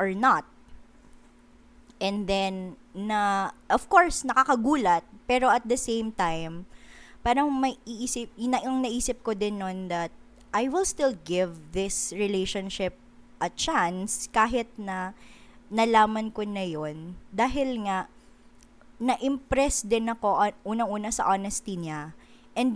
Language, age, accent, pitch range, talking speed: Filipino, 20-39, native, 180-240 Hz, 120 wpm